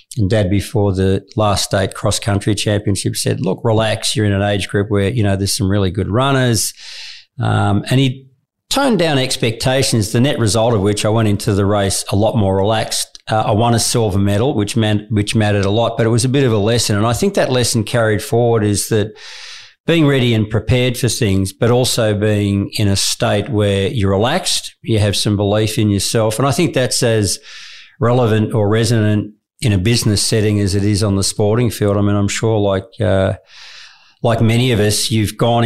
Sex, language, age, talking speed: male, English, 50-69, 210 wpm